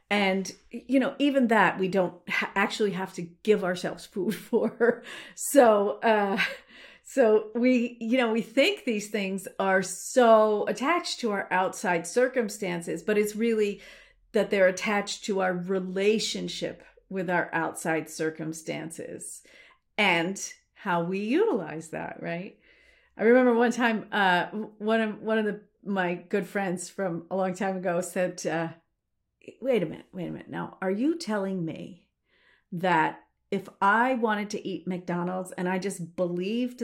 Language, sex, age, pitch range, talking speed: English, female, 40-59, 190-260 Hz, 150 wpm